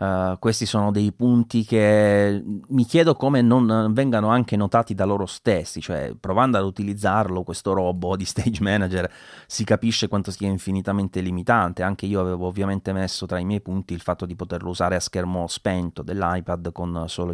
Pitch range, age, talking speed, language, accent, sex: 95-115 Hz, 30-49, 175 wpm, Italian, native, male